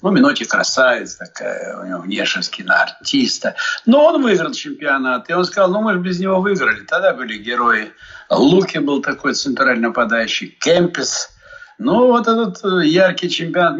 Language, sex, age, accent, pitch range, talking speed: Russian, male, 60-79, native, 140-230 Hz, 150 wpm